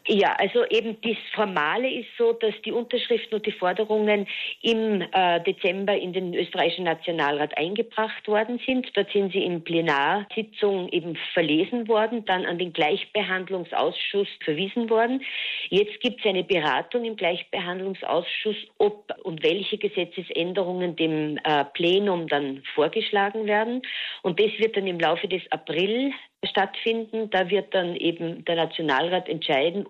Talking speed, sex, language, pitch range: 135 wpm, female, German, 170-215 Hz